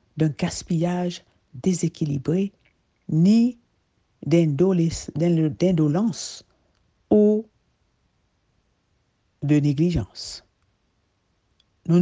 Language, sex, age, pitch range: French, female, 60-79, 130-185 Hz